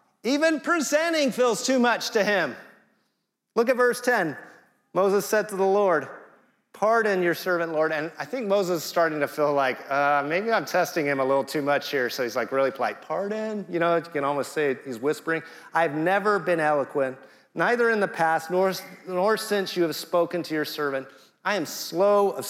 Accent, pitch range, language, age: American, 135-185 Hz, English, 30-49